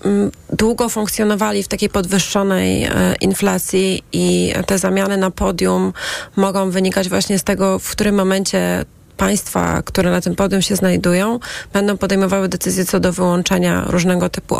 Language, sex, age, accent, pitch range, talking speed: Polish, female, 30-49, native, 140-200 Hz, 140 wpm